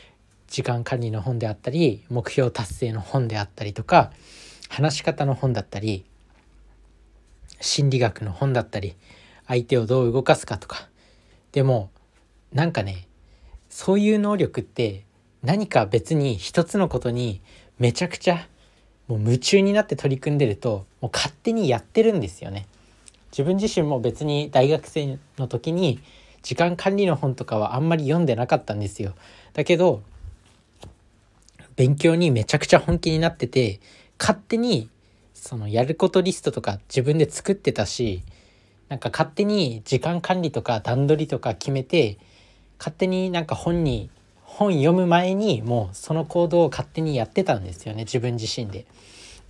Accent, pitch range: native, 105-155 Hz